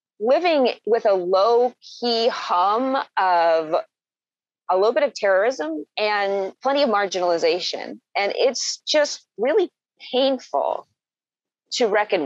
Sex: female